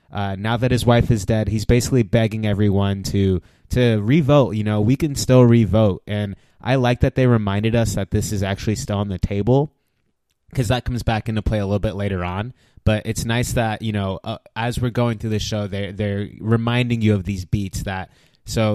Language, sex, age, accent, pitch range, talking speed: English, male, 20-39, American, 100-125 Hz, 220 wpm